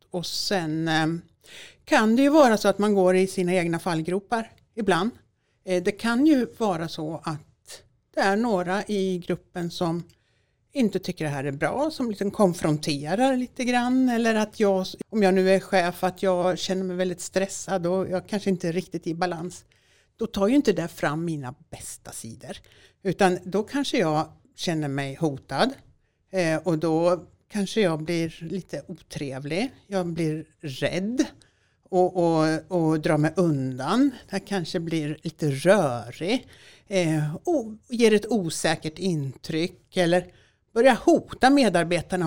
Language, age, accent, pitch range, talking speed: Swedish, 60-79, native, 160-215 Hz, 150 wpm